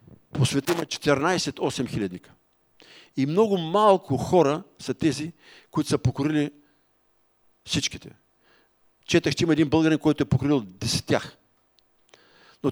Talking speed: 110 wpm